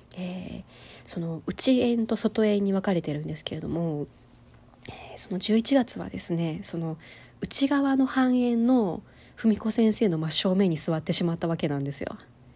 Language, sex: Japanese, female